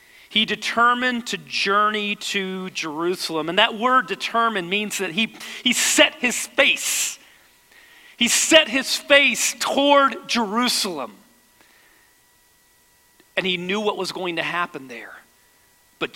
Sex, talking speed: male, 125 wpm